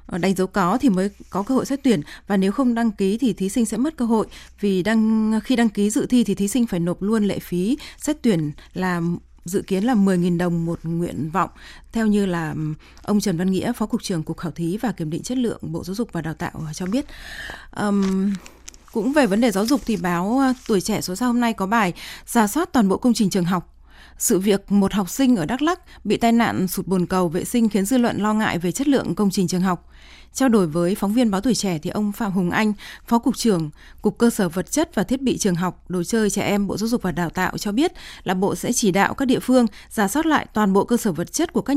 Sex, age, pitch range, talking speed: female, 20-39, 180-235 Hz, 265 wpm